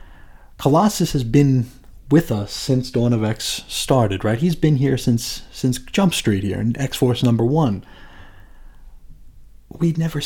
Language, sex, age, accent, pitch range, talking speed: English, male, 30-49, American, 110-140 Hz, 150 wpm